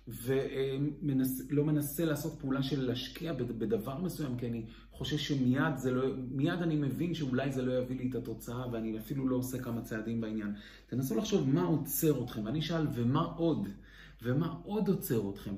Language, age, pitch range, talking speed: Hebrew, 30-49, 115-155 Hz, 165 wpm